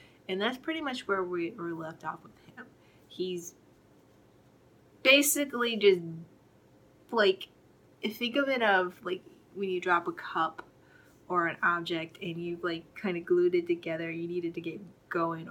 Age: 20-39